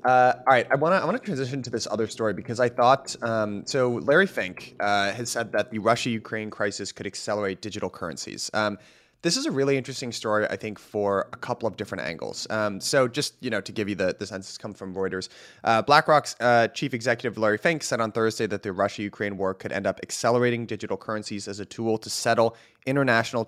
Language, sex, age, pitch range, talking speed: English, male, 30-49, 100-125 Hz, 220 wpm